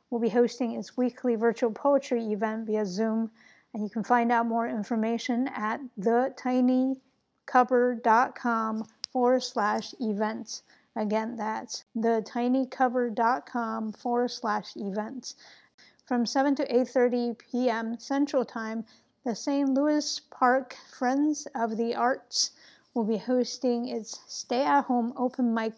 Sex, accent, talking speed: female, American, 105 wpm